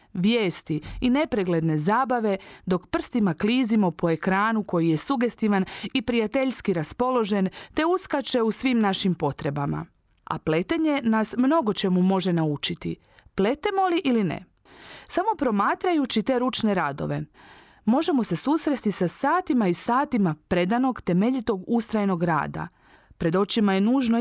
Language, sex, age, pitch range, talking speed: Croatian, female, 40-59, 180-255 Hz, 130 wpm